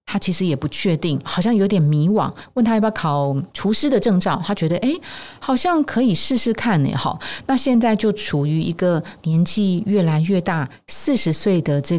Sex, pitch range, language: female, 145-190 Hz, Chinese